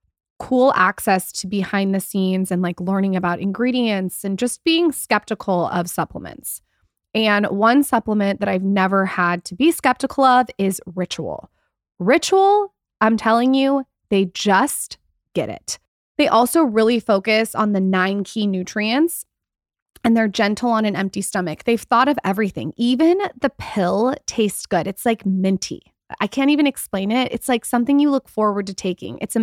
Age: 20-39